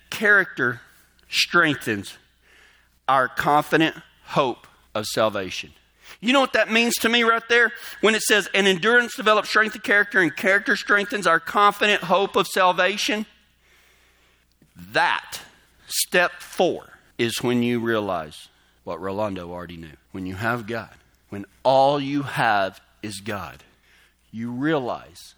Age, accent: 40-59, American